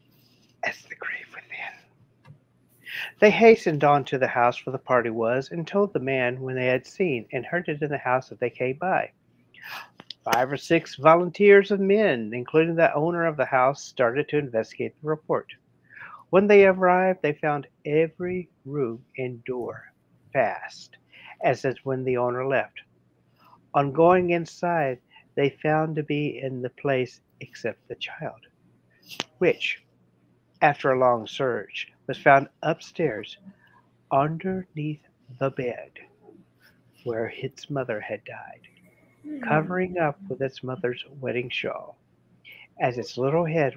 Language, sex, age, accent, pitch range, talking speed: English, male, 50-69, American, 125-170 Hz, 145 wpm